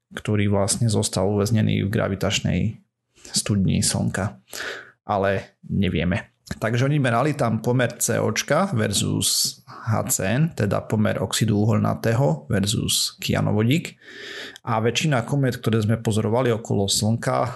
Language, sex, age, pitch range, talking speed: Slovak, male, 30-49, 110-125 Hz, 105 wpm